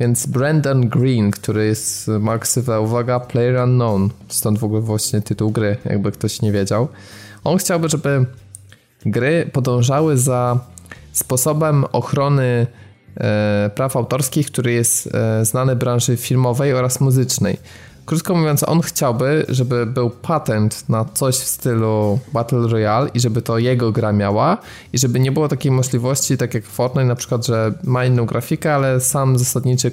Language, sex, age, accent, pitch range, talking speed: Polish, male, 20-39, native, 110-130 Hz, 145 wpm